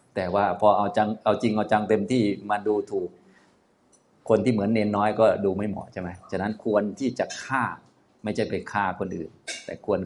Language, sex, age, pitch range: Thai, male, 30-49, 90-110 Hz